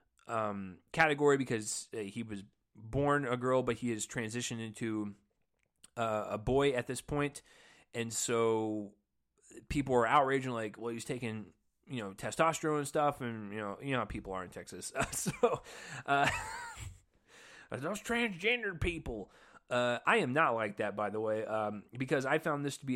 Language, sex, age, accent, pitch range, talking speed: English, male, 20-39, American, 110-140 Hz, 170 wpm